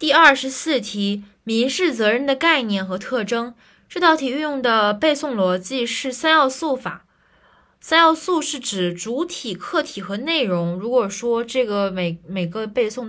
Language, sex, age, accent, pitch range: Chinese, female, 20-39, native, 185-250 Hz